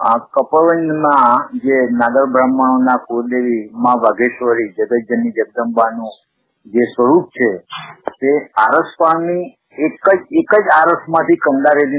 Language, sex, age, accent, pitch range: Gujarati, male, 50-69, native, 135-175 Hz